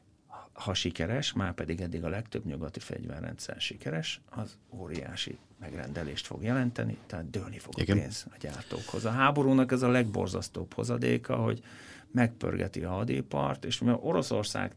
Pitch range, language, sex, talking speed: 85-120 Hz, Hungarian, male, 140 wpm